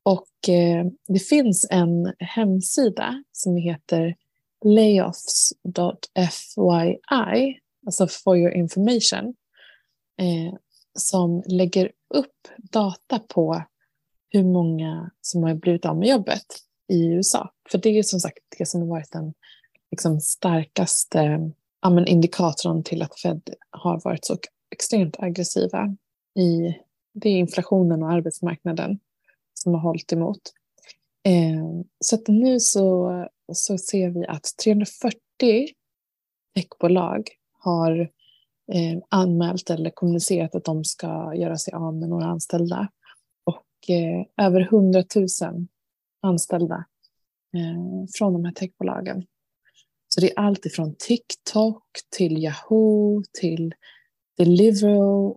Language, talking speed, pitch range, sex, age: Swedish, 110 wpm, 170-200 Hz, female, 20-39